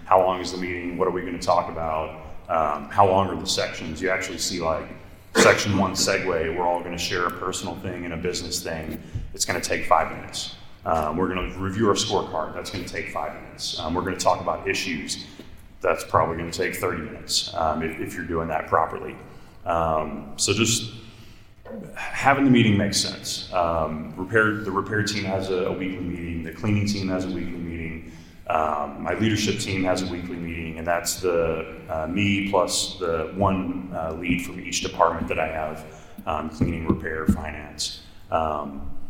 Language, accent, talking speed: English, American, 200 wpm